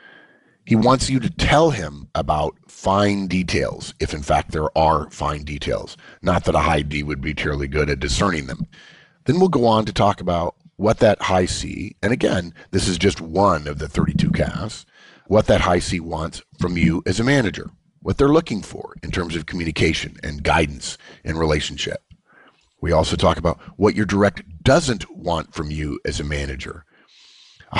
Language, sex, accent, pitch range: English, male, American, 80-110 Hz